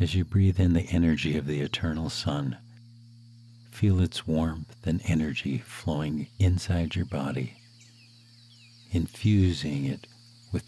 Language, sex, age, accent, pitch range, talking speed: English, male, 60-79, American, 80-115 Hz, 125 wpm